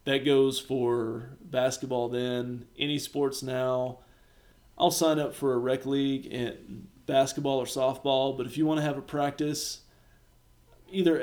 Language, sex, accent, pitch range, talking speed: English, male, American, 130-160 Hz, 150 wpm